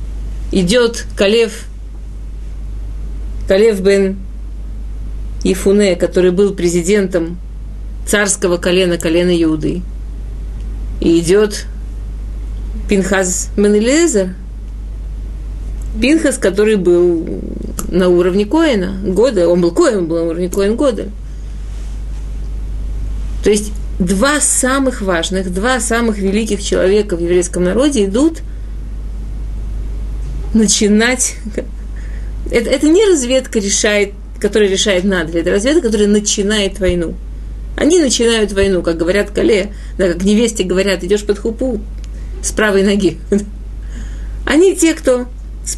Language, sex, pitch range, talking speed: Russian, female, 175-220 Hz, 100 wpm